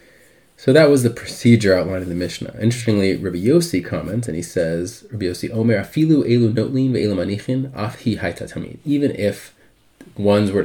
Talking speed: 120 wpm